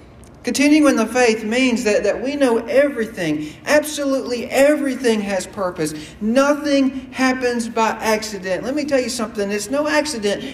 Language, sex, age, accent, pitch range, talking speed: English, male, 50-69, American, 180-245 Hz, 150 wpm